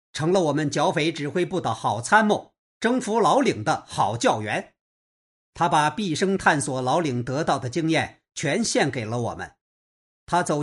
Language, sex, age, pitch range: Chinese, male, 50-69, 140-200 Hz